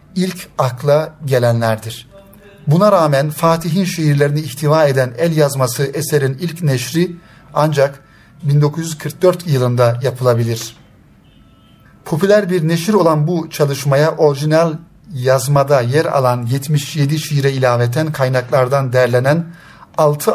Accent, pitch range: native, 130-165 Hz